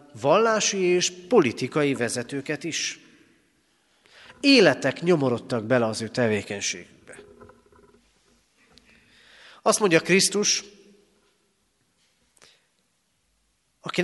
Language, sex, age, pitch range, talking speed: Hungarian, male, 40-59, 125-175 Hz, 65 wpm